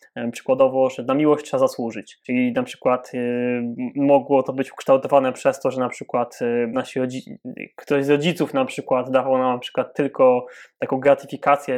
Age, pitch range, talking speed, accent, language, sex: 20-39, 130-160 Hz, 170 wpm, native, Polish, male